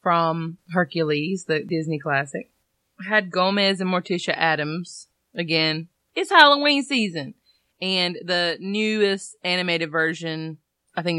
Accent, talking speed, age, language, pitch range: American, 120 wpm, 20-39, English, 155-190 Hz